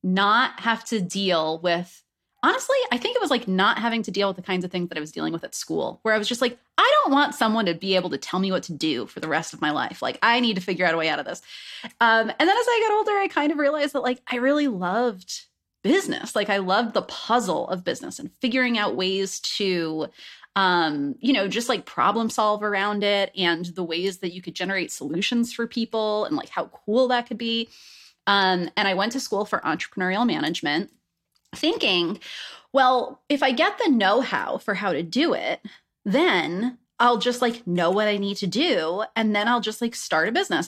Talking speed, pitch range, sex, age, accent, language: 230 wpm, 185-245 Hz, female, 30-49, American, English